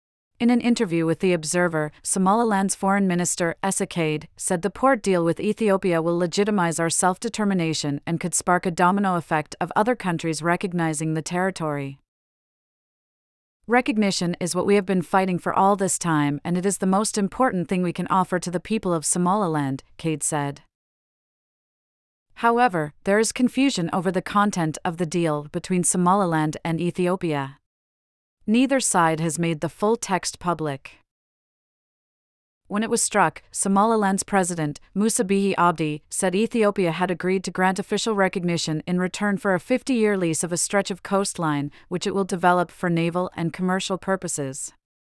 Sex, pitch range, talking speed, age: female, 165-195 Hz, 160 wpm, 30-49